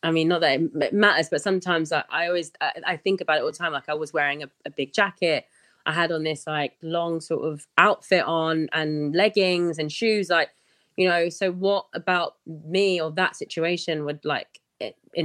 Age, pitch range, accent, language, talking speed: 20-39, 150-185 Hz, British, English, 215 wpm